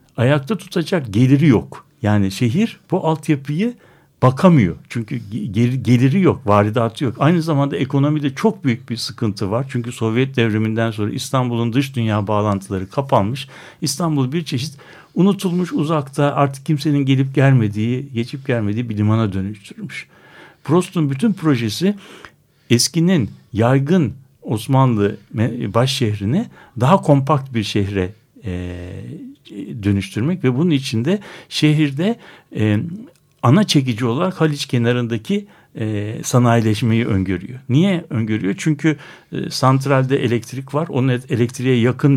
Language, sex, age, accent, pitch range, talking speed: Turkish, male, 60-79, native, 110-155 Hz, 110 wpm